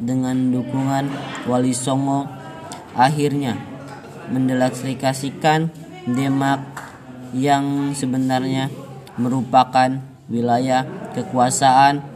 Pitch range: 125-140 Hz